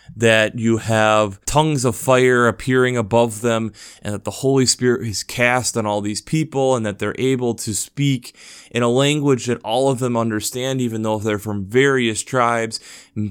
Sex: male